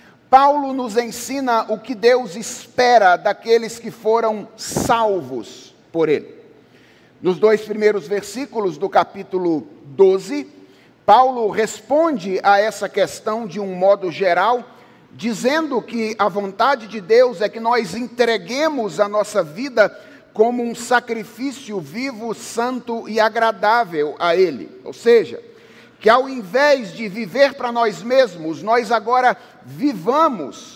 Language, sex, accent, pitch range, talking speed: Portuguese, male, Brazilian, 215-260 Hz, 125 wpm